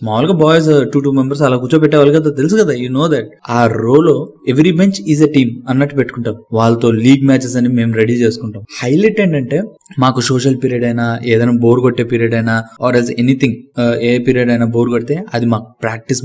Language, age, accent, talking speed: Telugu, 20-39, native, 180 wpm